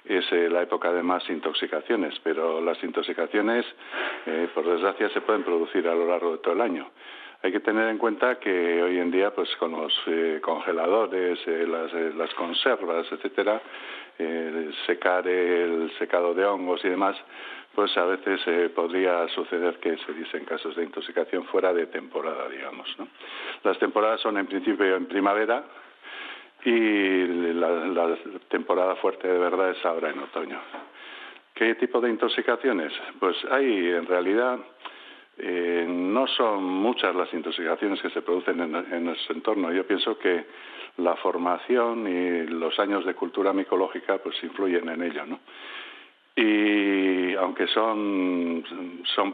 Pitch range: 85-100 Hz